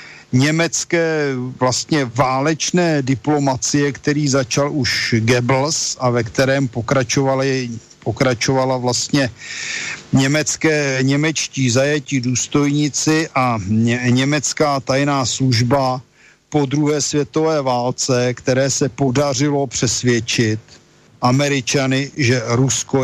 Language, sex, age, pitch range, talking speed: Slovak, male, 50-69, 125-145 Hz, 85 wpm